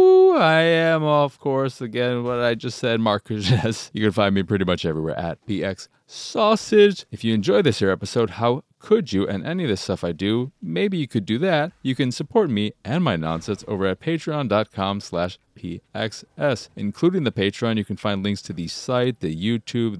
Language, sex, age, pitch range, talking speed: English, male, 30-49, 105-160 Hz, 200 wpm